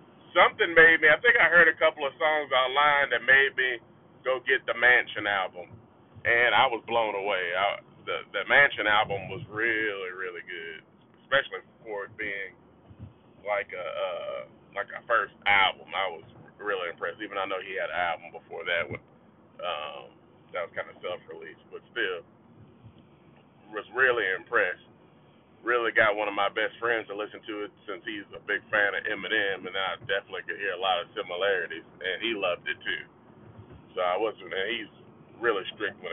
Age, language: 30-49, English